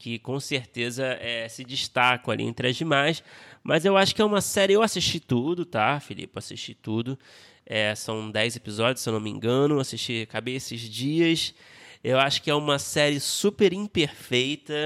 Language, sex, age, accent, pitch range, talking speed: Portuguese, male, 20-39, Brazilian, 115-140 Hz, 180 wpm